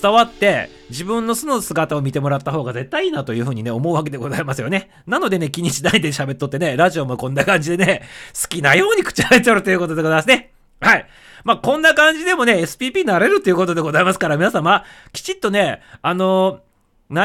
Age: 40-59